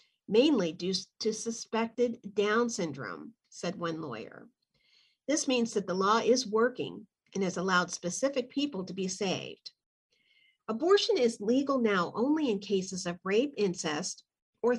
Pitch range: 195-255 Hz